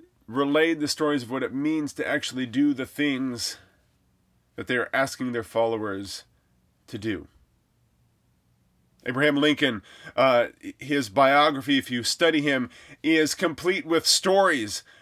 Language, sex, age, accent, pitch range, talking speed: English, male, 30-49, American, 120-150 Hz, 130 wpm